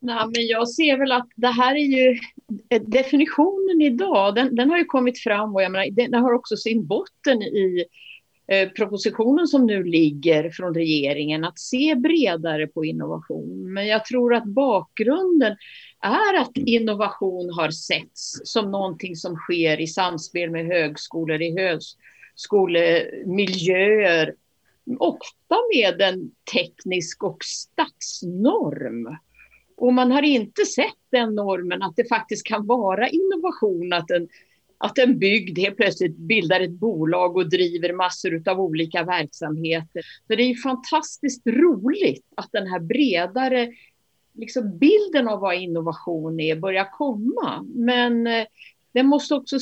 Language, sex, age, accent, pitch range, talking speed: Swedish, female, 50-69, native, 180-260 Hz, 140 wpm